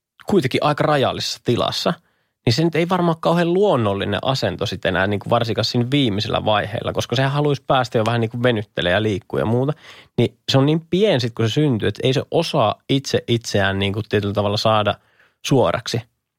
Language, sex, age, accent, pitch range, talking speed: Finnish, male, 20-39, native, 110-135 Hz, 180 wpm